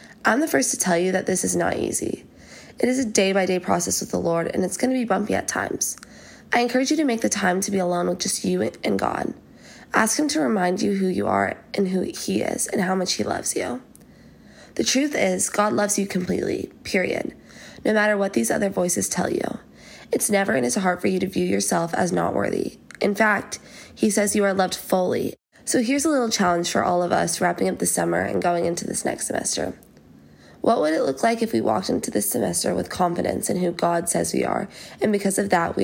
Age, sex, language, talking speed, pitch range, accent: 20-39, female, English, 235 wpm, 175-215 Hz, American